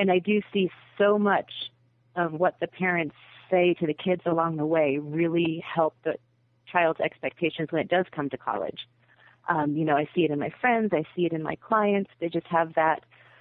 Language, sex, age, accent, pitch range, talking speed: English, female, 30-49, American, 150-185 Hz, 210 wpm